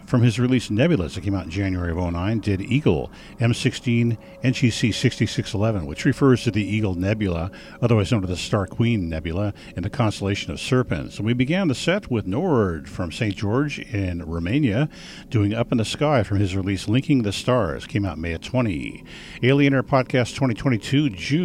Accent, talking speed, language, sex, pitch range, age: American, 185 wpm, English, male, 95-130 Hz, 50-69